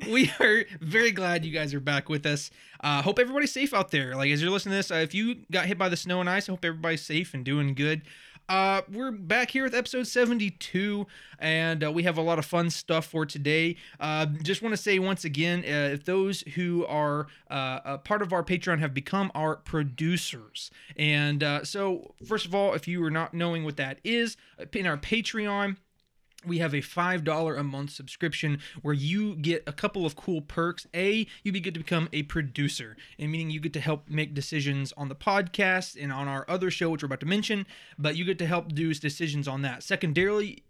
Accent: American